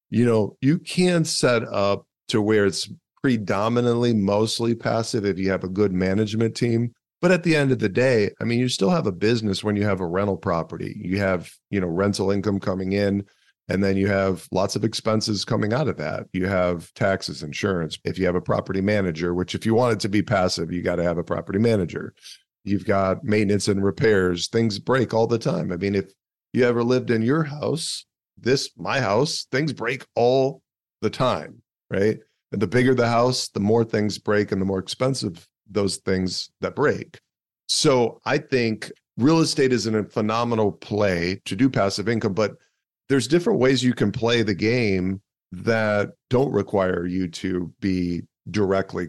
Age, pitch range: 40-59, 95-120 Hz